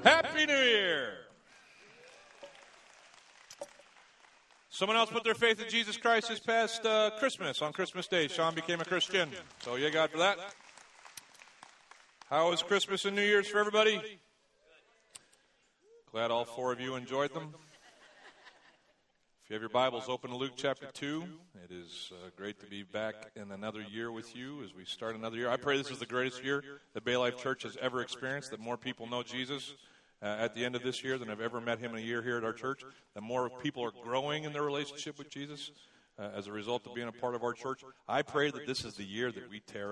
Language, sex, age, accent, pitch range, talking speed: English, male, 40-59, American, 120-150 Hz, 205 wpm